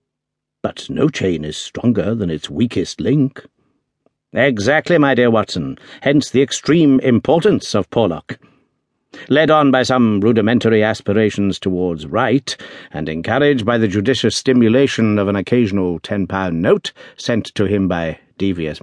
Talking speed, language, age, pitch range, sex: 135 wpm, English, 60-79, 100-145 Hz, male